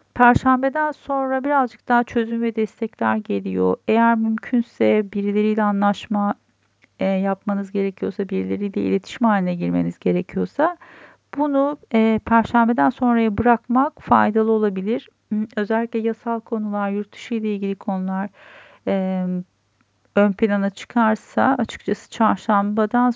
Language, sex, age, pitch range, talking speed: Turkish, female, 40-59, 190-235 Hz, 95 wpm